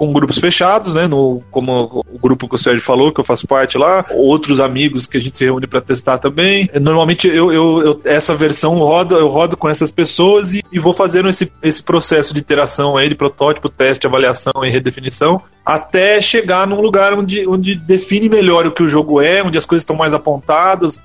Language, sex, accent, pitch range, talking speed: Portuguese, male, Brazilian, 145-180 Hz, 220 wpm